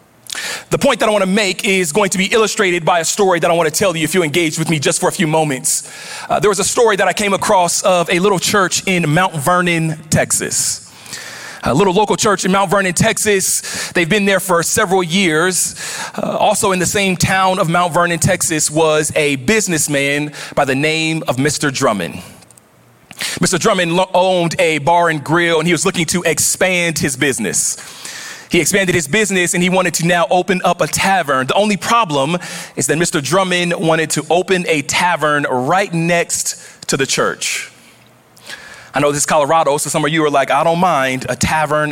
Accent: American